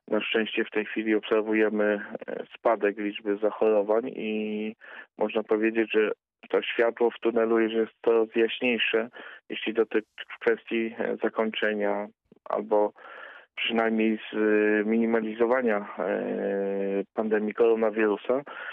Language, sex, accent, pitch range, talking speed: Polish, male, native, 105-115 Hz, 95 wpm